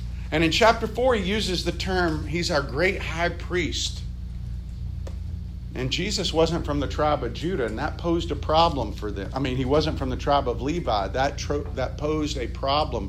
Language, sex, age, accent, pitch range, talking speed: English, male, 50-69, American, 105-170 Hz, 195 wpm